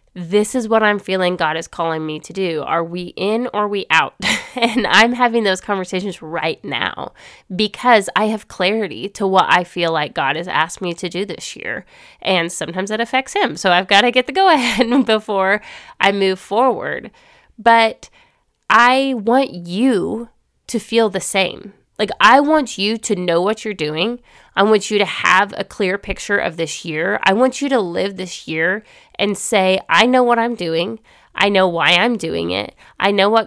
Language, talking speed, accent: English, 195 wpm, American